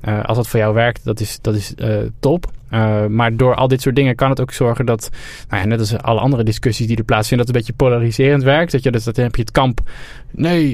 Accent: Dutch